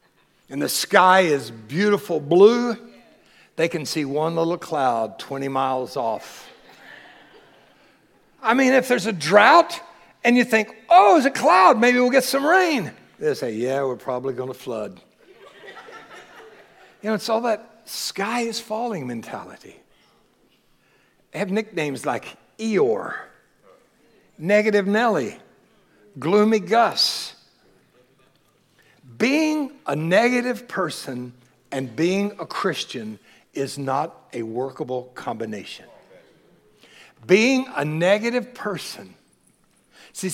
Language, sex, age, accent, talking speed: English, male, 60-79, American, 115 wpm